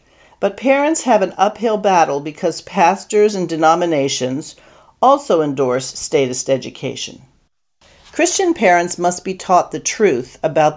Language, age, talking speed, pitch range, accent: English, 50-69, 125 wpm, 145-195 Hz, American